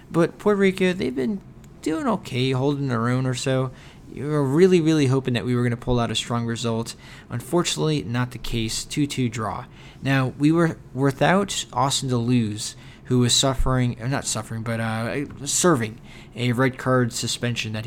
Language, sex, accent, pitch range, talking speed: English, male, American, 115-140 Hz, 175 wpm